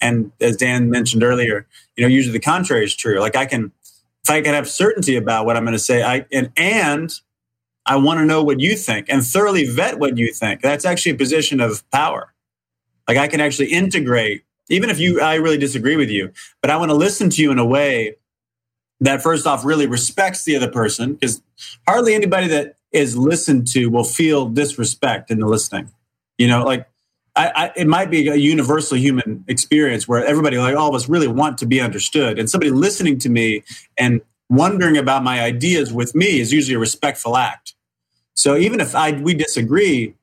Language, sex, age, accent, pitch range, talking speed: English, male, 30-49, American, 120-155 Hz, 205 wpm